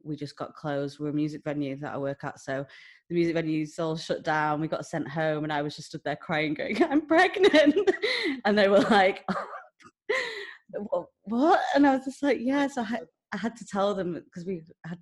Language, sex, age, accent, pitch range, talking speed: English, female, 20-39, British, 155-200 Hz, 215 wpm